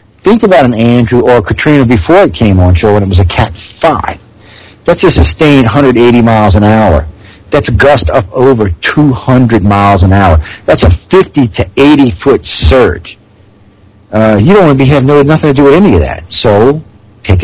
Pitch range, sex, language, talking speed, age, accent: 95-125 Hz, male, English, 195 wpm, 50-69, American